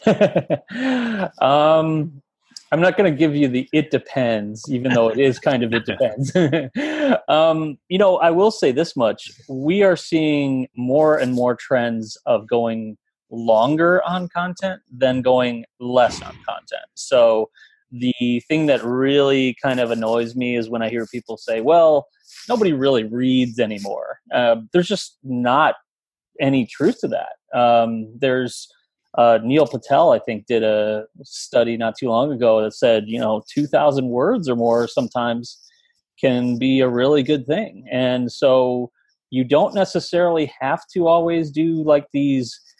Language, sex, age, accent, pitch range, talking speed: English, male, 30-49, American, 120-155 Hz, 155 wpm